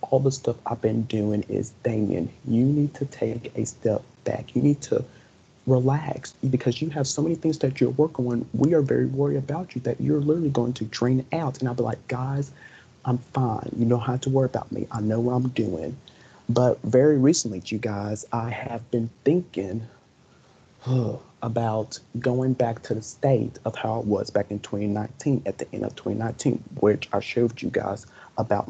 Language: English